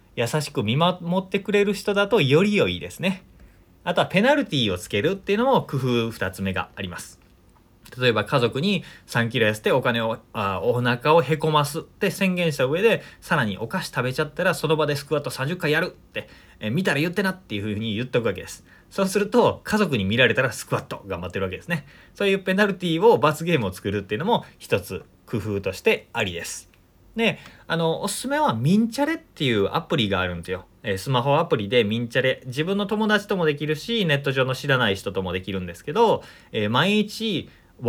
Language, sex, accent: Japanese, male, native